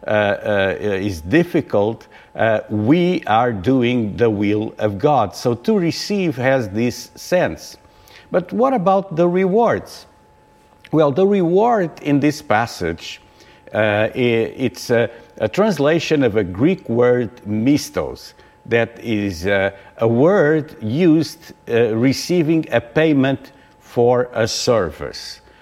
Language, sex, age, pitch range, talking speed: English, male, 50-69, 115-160 Hz, 120 wpm